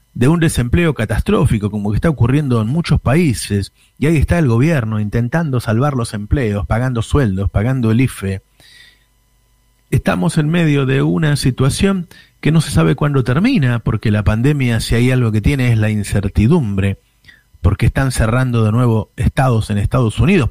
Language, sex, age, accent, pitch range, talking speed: Spanish, male, 40-59, Argentinian, 105-140 Hz, 165 wpm